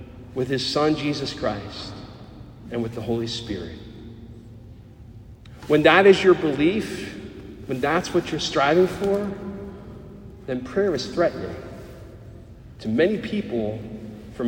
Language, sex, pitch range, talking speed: English, male, 115-175 Hz, 120 wpm